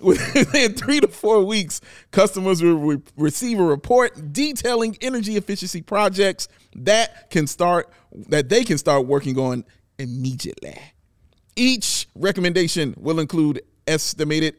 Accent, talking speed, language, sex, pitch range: American, 125 wpm, English, male, 150-220 Hz